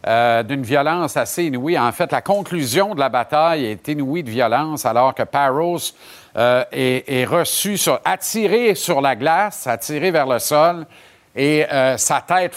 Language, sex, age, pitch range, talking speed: French, male, 50-69, 125-170 Hz, 170 wpm